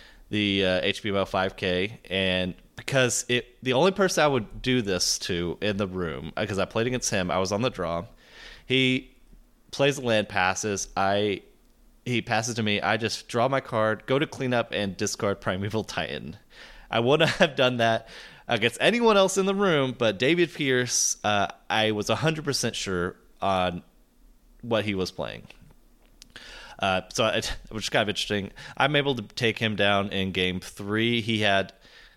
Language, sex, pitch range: English, male, 95-120 Hz